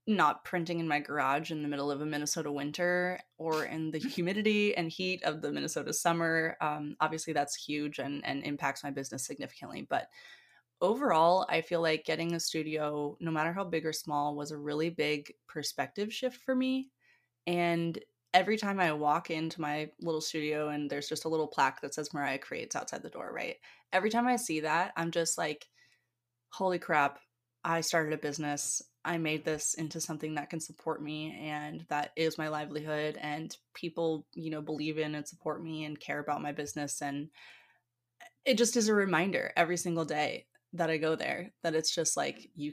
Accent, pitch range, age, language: American, 150-175 Hz, 20-39, English